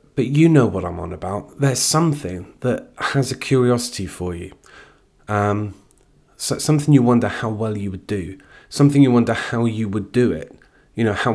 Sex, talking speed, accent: male, 185 wpm, British